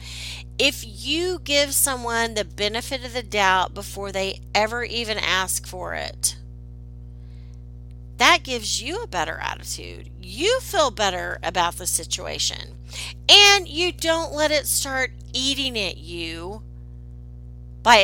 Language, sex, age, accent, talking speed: English, female, 40-59, American, 125 wpm